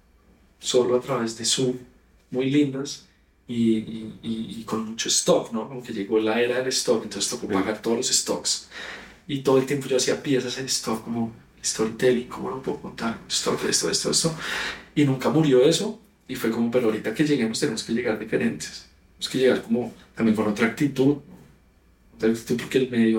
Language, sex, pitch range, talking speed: Spanish, male, 110-130 Hz, 190 wpm